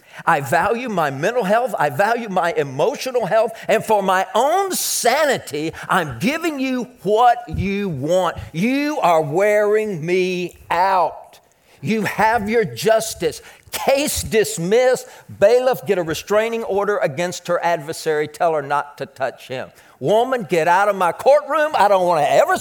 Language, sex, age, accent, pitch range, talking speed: English, male, 50-69, American, 145-220 Hz, 150 wpm